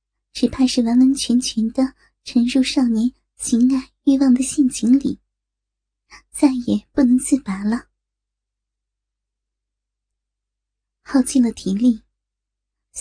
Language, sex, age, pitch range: Chinese, male, 20-39, 240-270 Hz